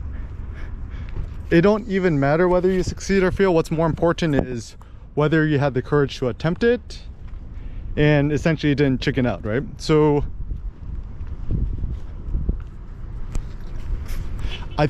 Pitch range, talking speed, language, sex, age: 85-140 Hz, 115 wpm, English, male, 20-39